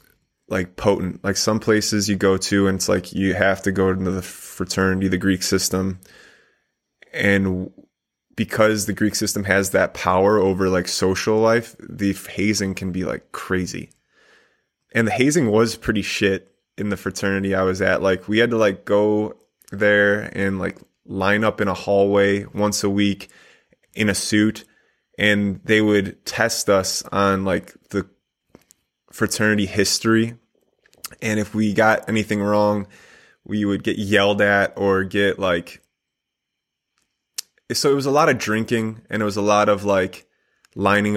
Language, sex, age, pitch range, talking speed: English, male, 20-39, 95-110 Hz, 160 wpm